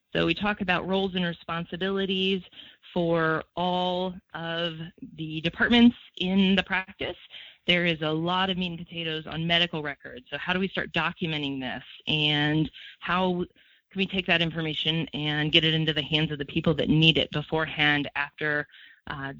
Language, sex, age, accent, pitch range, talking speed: English, female, 30-49, American, 150-185 Hz, 170 wpm